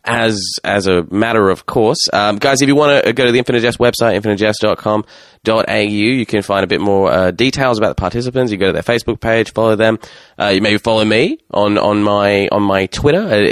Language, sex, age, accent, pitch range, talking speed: English, male, 20-39, Australian, 100-120 Hz, 230 wpm